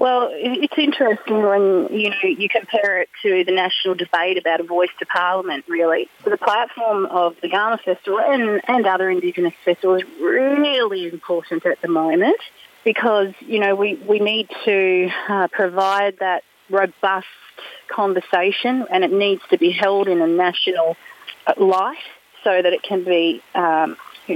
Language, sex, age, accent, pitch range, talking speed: English, female, 30-49, Australian, 180-210 Hz, 160 wpm